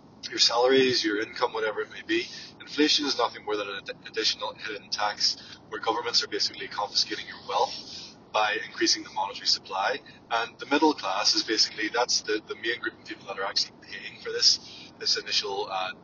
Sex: male